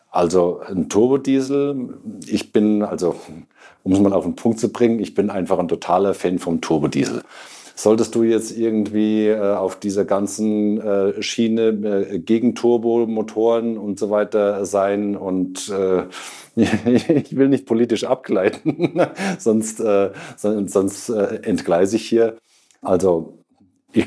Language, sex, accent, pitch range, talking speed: German, male, German, 90-110 Hz, 135 wpm